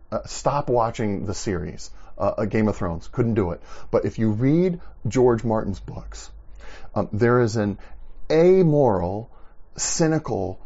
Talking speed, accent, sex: 140 wpm, American, male